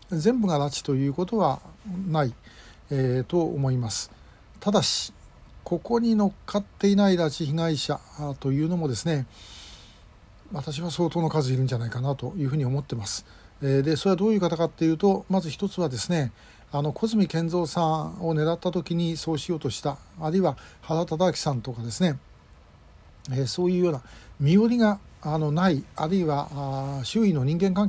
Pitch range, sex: 140-190 Hz, male